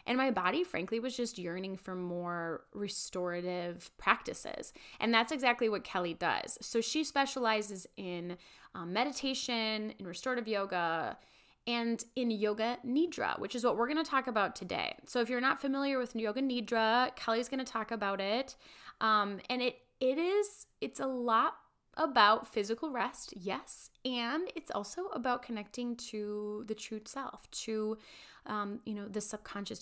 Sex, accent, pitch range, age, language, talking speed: female, American, 195-245 Hz, 10-29, English, 160 wpm